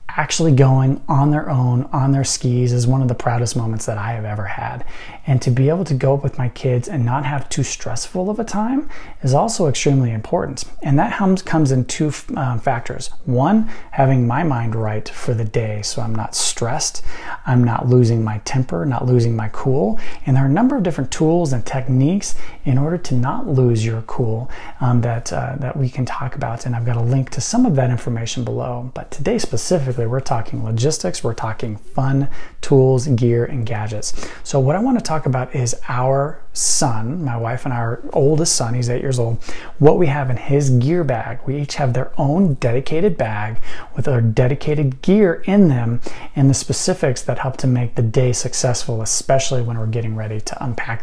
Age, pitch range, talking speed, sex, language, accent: 30-49, 120-145 Hz, 205 wpm, male, English, American